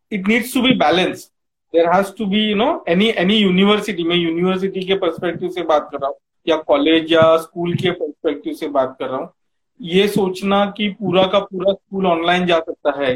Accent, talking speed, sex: native, 195 wpm, male